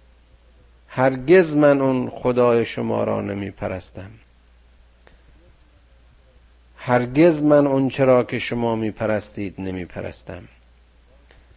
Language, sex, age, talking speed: Persian, male, 50-69, 80 wpm